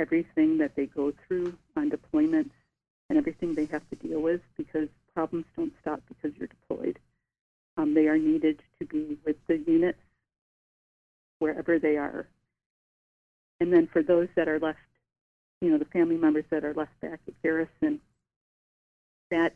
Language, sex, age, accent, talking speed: English, female, 50-69, American, 160 wpm